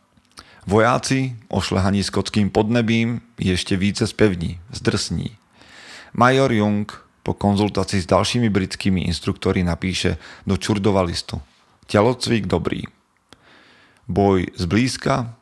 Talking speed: 100 wpm